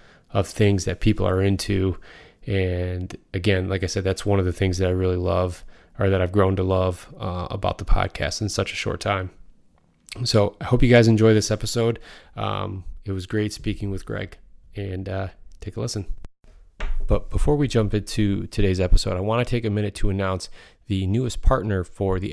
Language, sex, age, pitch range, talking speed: English, male, 20-39, 90-100 Hz, 200 wpm